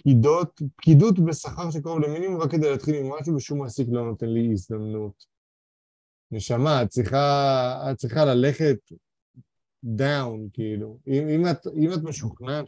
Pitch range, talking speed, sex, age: 120-150 Hz, 135 wpm, male, 30-49